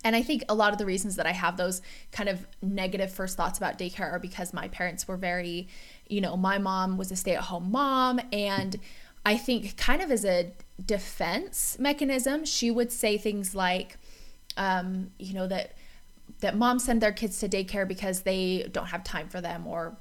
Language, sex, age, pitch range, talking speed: English, female, 20-39, 185-215 Hz, 200 wpm